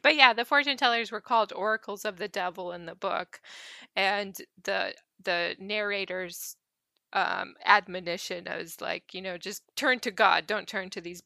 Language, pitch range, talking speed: English, 185-230 Hz, 170 wpm